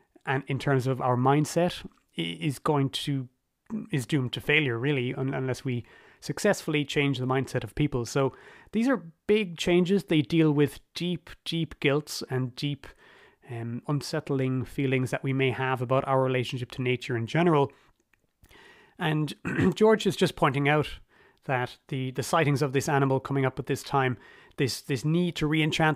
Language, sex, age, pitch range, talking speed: English, male, 30-49, 130-160 Hz, 165 wpm